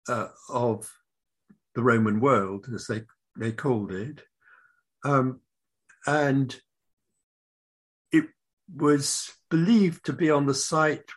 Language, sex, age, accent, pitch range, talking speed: English, male, 60-79, British, 120-150 Hz, 105 wpm